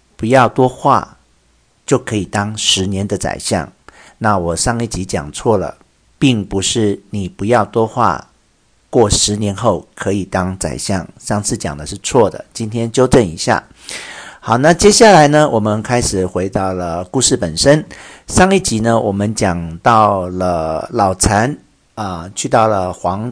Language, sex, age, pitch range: Chinese, male, 50-69, 95-125 Hz